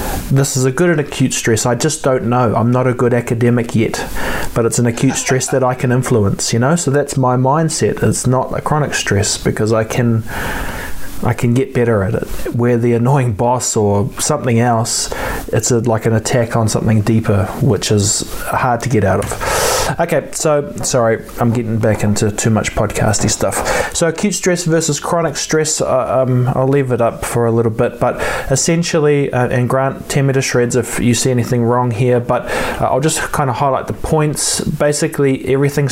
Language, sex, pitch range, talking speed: English, male, 120-140 Hz, 195 wpm